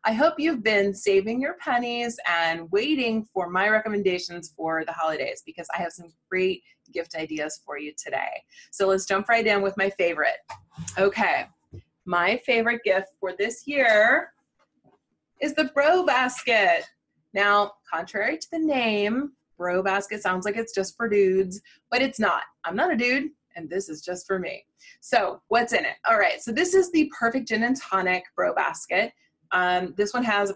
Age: 20-39